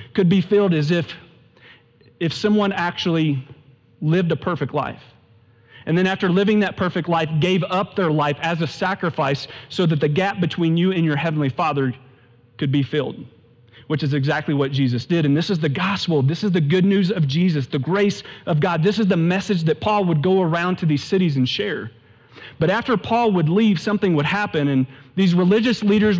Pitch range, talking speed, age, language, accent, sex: 125-180 Hz, 200 wpm, 40-59, English, American, male